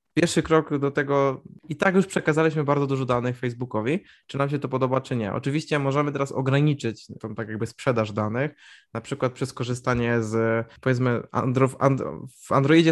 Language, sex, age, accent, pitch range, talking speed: Polish, male, 20-39, native, 115-140 Hz, 175 wpm